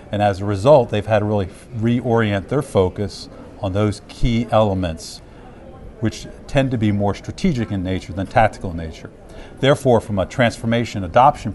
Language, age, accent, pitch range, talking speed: English, 50-69, American, 95-115 Hz, 165 wpm